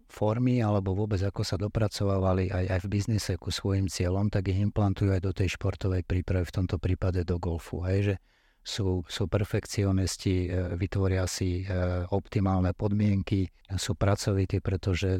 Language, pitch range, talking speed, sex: Slovak, 95-110 Hz, 150 wpm, male